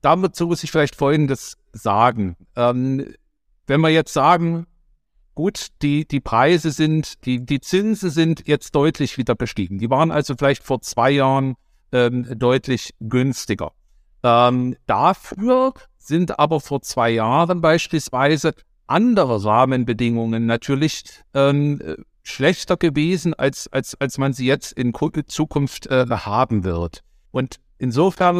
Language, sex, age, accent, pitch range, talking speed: German, male, 60-79, German, 125-165 Hz, 130 wpm